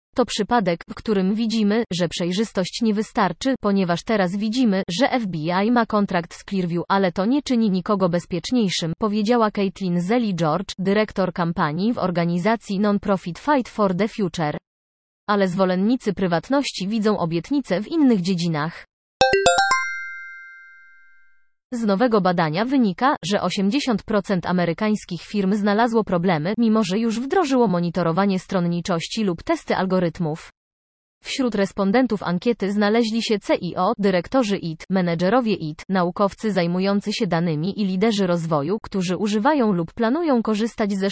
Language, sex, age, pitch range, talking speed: Polish, female, 20-39, 175-225 Hz, 125 wpm